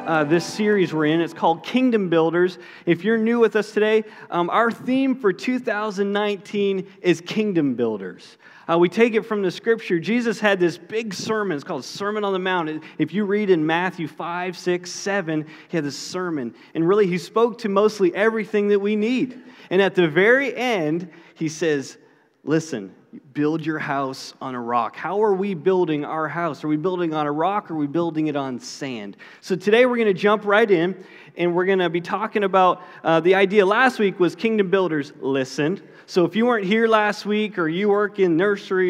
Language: English